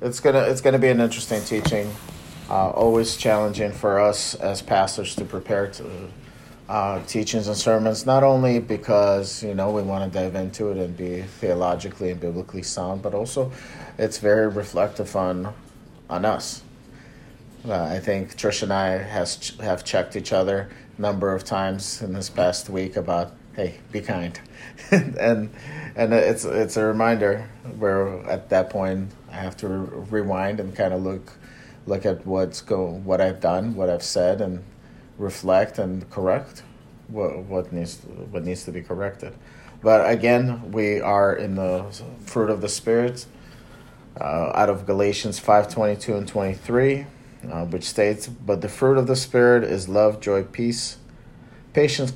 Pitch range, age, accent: 95-115 Hz, 30-49, American